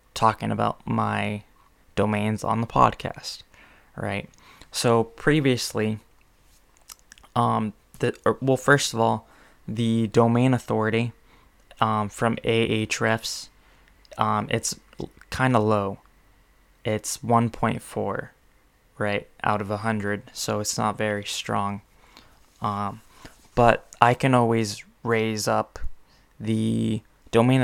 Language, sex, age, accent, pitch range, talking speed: English, male, 20-39, American, 105-115 Hz, 100 wpm